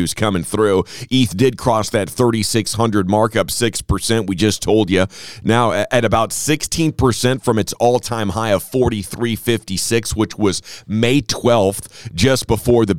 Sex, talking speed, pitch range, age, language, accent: male, 140 wpm, 105-125 Hz, 40-59, English, American